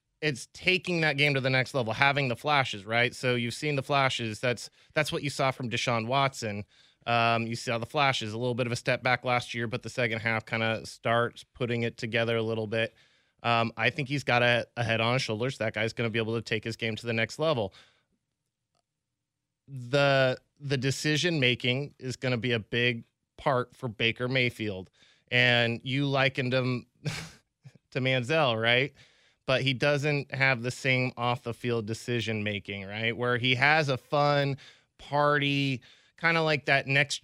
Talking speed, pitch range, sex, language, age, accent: 195 wpm, 115-135 Hz, male, English, 20-39, American